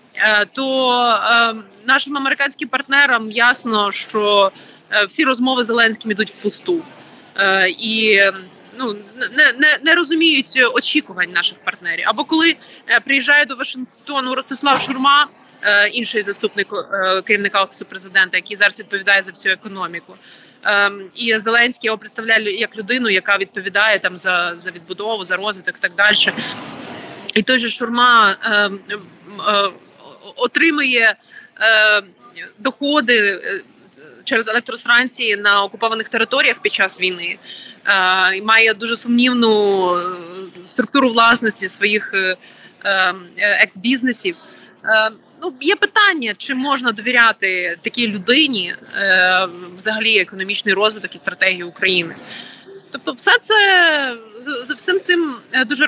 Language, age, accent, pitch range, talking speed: Ukrainian, 30-49, native, 200-265 Hz, 115 wpm